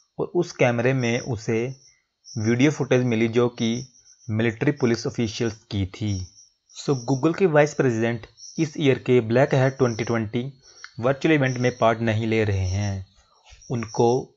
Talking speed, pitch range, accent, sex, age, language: 145 wpm, 110-130 Hz, native, male, 30-49, Hindi